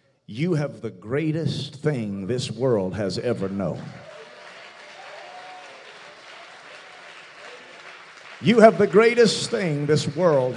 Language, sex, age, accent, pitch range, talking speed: English, male, 50-69, American, 135-195 Hz, 95 wpm